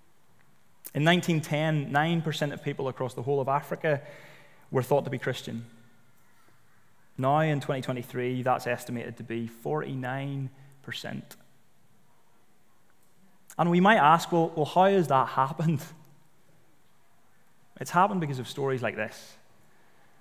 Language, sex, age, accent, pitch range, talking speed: English, male, 20-39, British, 125-155 Hz, 120 wpm